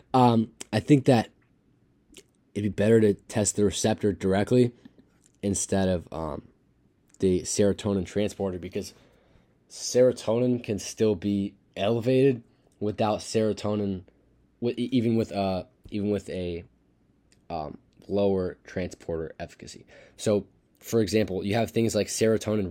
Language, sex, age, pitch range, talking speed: English, male, 20-39, 100-120 Hz, 120 wpm